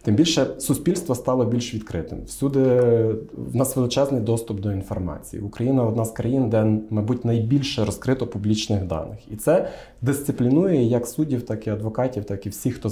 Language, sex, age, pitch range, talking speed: Ukrainian, male, 20-39, 105-125 Hz, 165 wpm